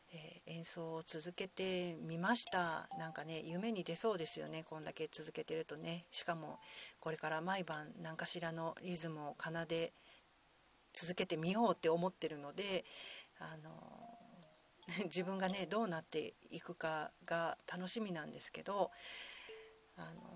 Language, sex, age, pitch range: Japanese, female, 40-59, 165-225 Hz